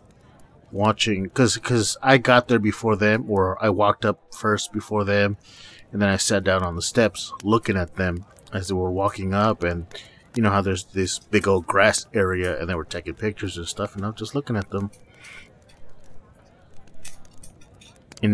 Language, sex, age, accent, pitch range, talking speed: English, male, 30-49, American, 95-110 Hz, 180 wpm